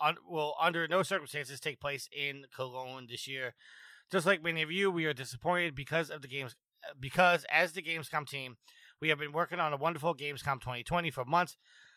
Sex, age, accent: male, 30-49, American